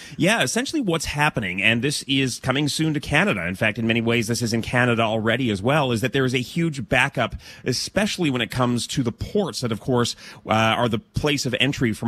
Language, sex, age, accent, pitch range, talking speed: English, male, 30-49, American, 115-150 Hz, 235 wpm